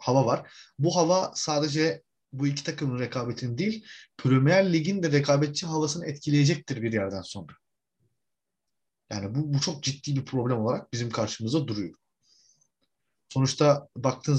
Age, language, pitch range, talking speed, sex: 30-49, Turkish, 110-140 Hz, 135 wpm, male